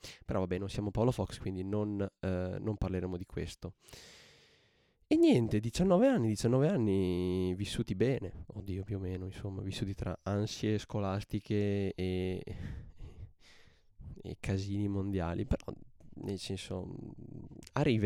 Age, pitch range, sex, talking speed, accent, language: 20-39, 90-110 Hz, male, 130 wpm, native, Italian